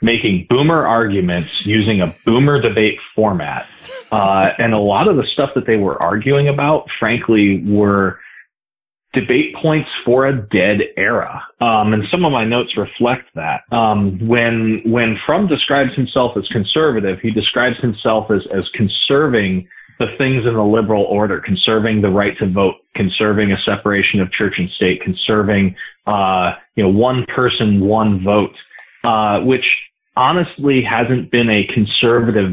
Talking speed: 155 wpm